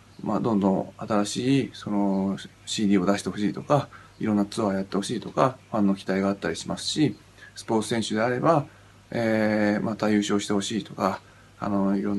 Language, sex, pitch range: Japanese, male, 100-125 Hz